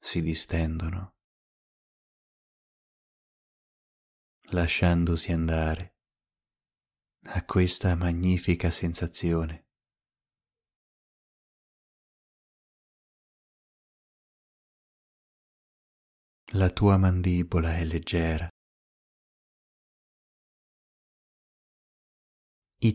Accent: native